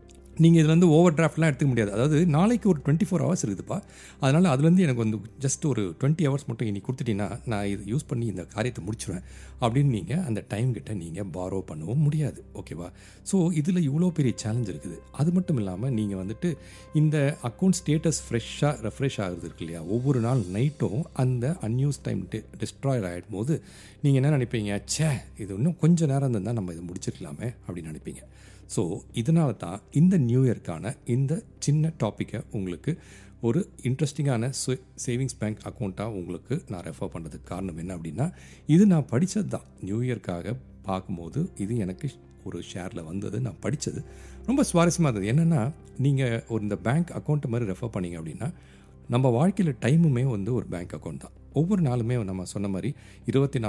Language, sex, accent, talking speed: Tamil, male, native, 160 wpm